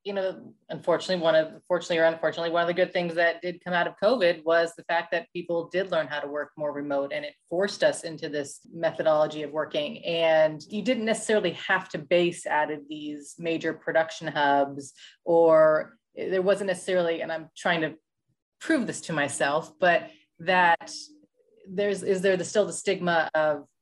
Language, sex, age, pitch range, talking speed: English, female, 30-49, 155-190 Hz, 190 wpm